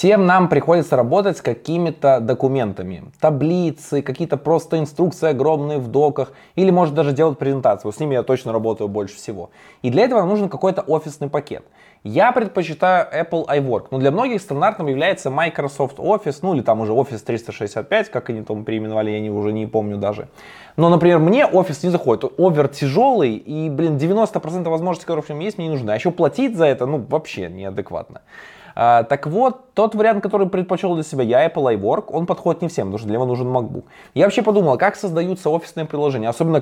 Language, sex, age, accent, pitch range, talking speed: Russian, male, 20-39, native, 125-165 Hz, 190 wpm